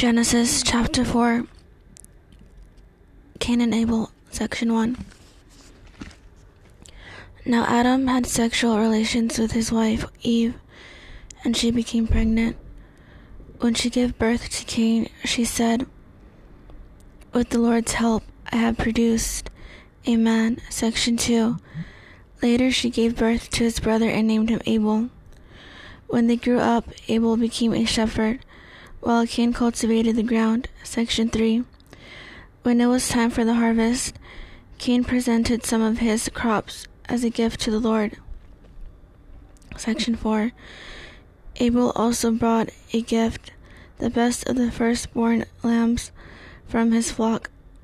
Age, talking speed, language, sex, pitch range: 10-29, 125 wpm, English, female, 225-240 Hz